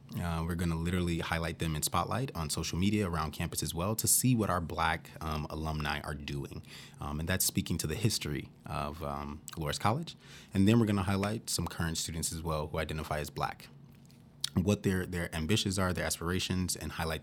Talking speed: 210 wpm